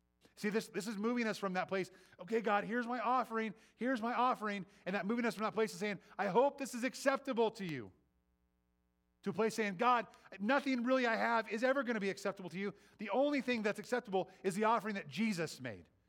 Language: English